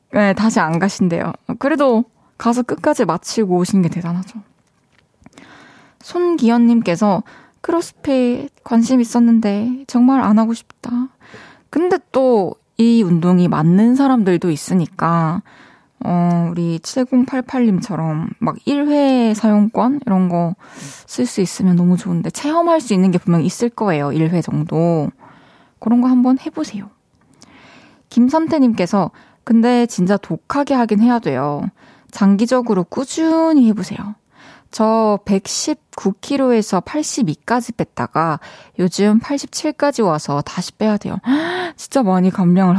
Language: Korean